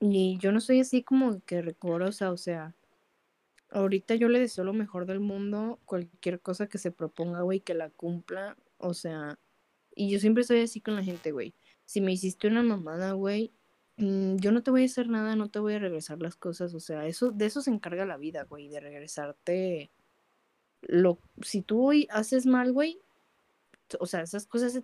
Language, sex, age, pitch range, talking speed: Spanish, female, 20-39, 175-220 Hz, 200 wpm